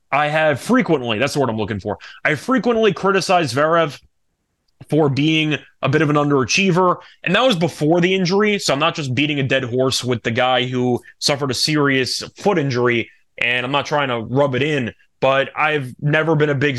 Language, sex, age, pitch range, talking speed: English, male, 20-39, 130-160 Hz, 200 wpm